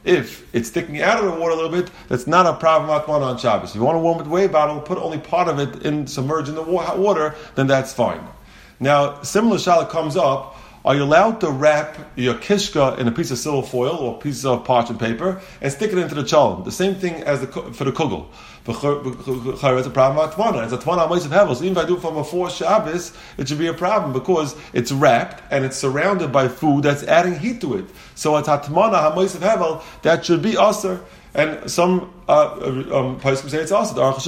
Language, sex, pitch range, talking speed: English, male, 135-185 Hz, 215 wpm